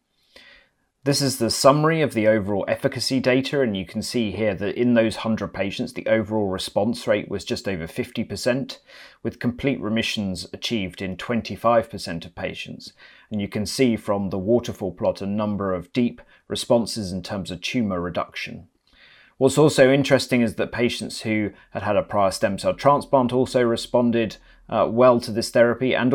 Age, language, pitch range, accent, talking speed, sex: 30-49, English, 100-125 Hz, British, 170 wpm, male